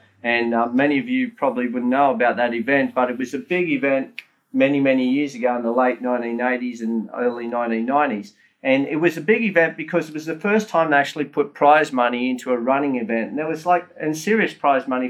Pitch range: 135-175 Hz